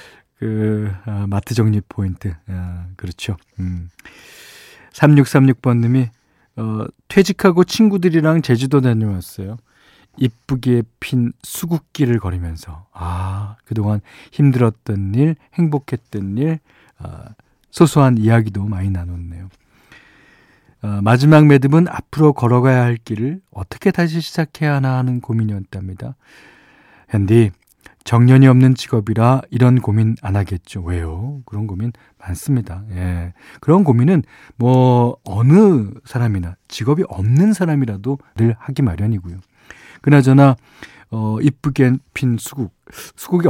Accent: native